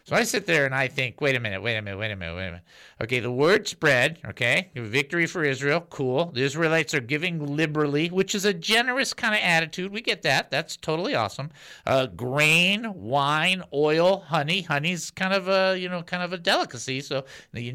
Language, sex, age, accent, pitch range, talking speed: English, male, 50-69, American, 130-180 Hz, 215 wpm